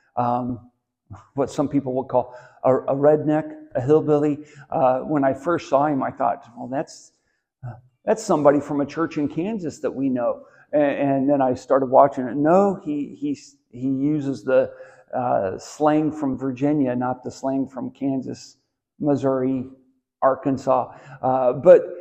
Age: 50-69